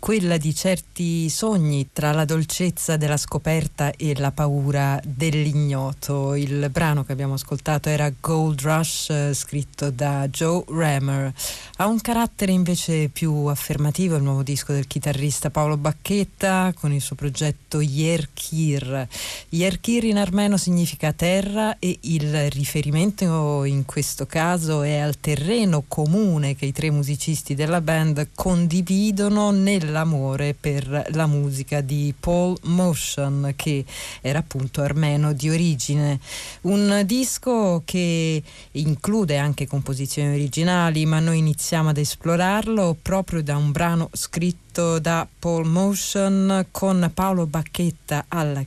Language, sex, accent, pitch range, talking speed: Italian, female, native, 145-175 Hz, 125 wpm